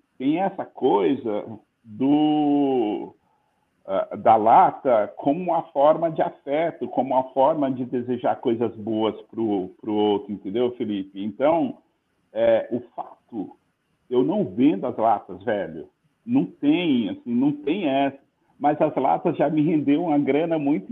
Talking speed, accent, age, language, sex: 140 wpm, Brazilian, 50-69, Portuguese, male